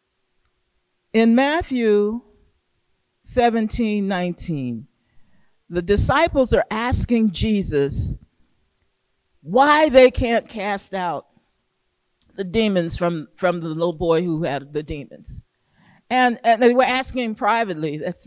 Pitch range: 160-230 Hz